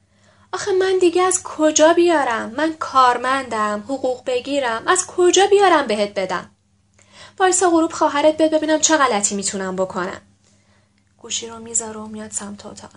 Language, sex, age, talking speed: Persian, female, 10-29, 140 wpm